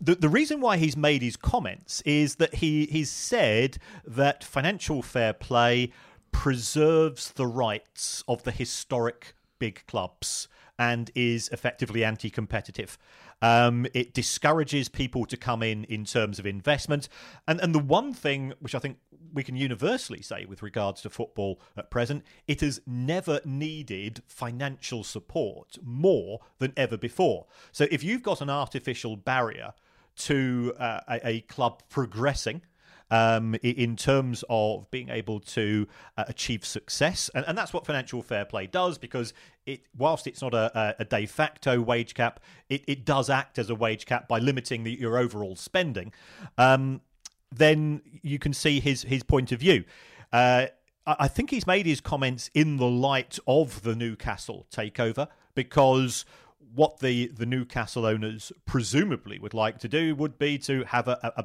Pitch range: 115-145 Hz